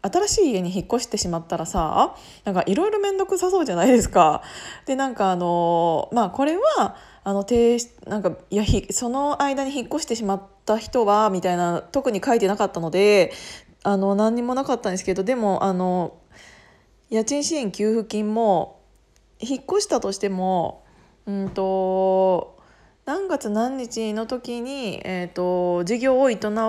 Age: 20-39